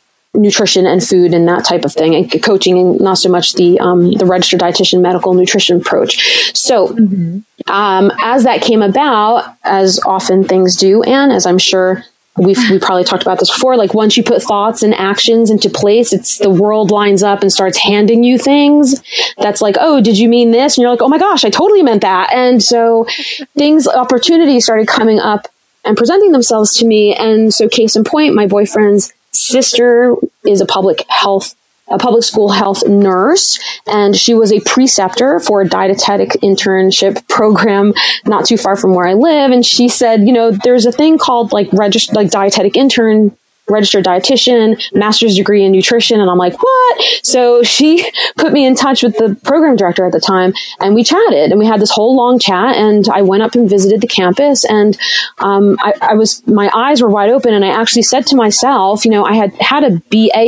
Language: English